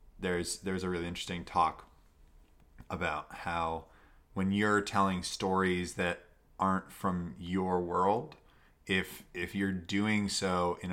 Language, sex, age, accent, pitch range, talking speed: English, male, 20-39, American, 85-95 Hz, 125 wpm